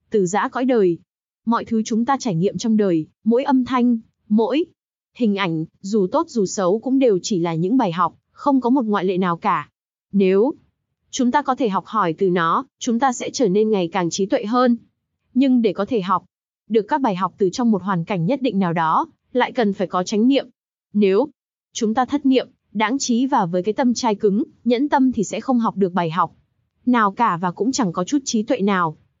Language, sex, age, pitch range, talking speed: Vietnamese, female, 20-39, 195-250 Hz, 230 wpm